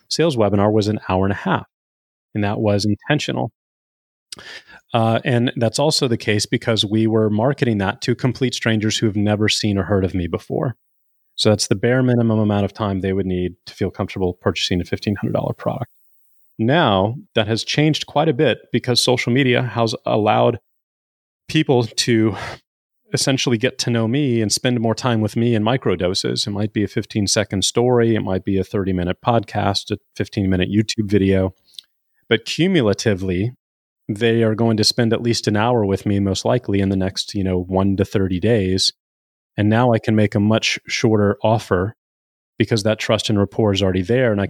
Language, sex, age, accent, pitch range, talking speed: English, male, 30-49, American, 100-115 Hz, 195 wpm